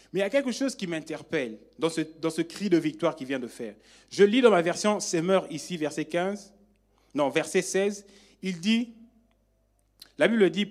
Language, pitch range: French, 180-240 Hz